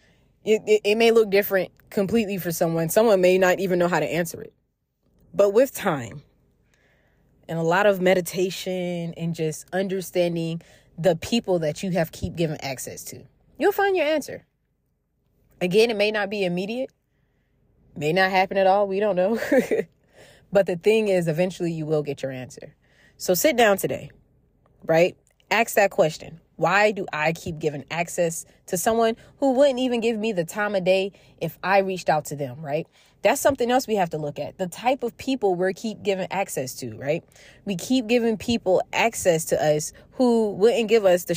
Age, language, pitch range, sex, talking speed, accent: 20-39, English, 155-205 Hz, female, 185 wpm, American